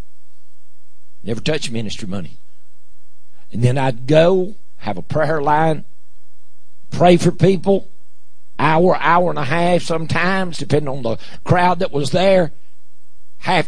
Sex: male